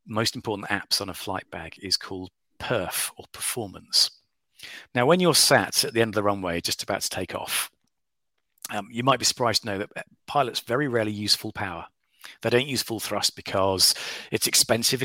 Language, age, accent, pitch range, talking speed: English, 40-59, British, 105-125 Hz, 195 wpm